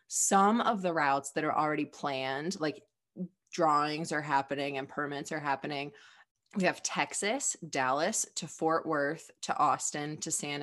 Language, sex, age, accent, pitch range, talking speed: English, female, 20-39, American, 135-165 Hz, 150 wpm